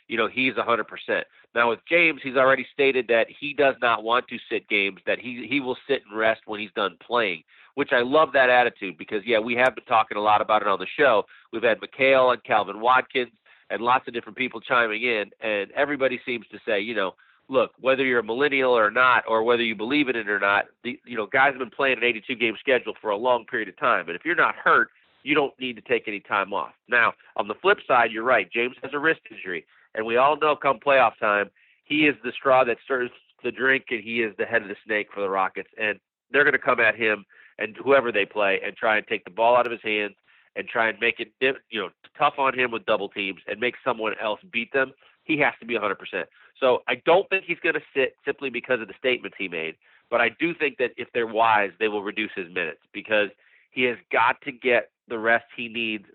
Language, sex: English, male